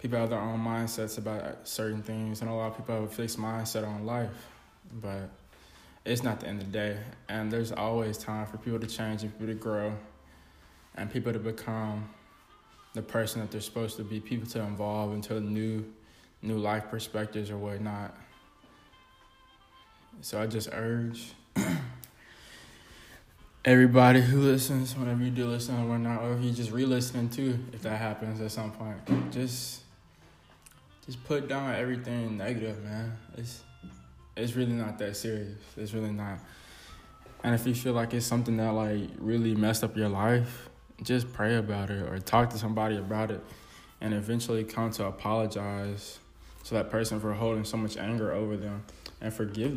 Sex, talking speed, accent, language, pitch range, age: male, 170 wpm, American, English, 105-115 Hz, 20-39